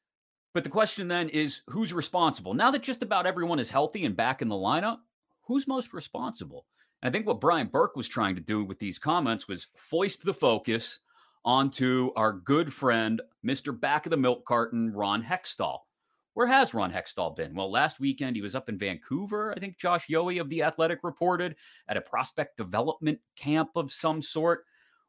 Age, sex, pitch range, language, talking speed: 30-49, male, 125-175 Hz, English, 190 wpm